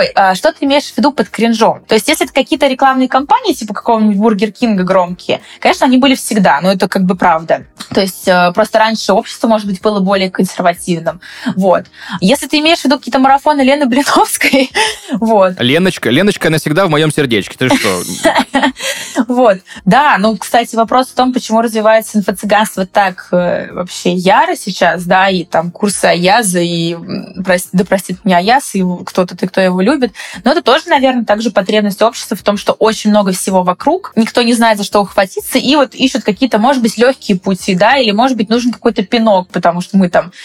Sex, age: female, 20-39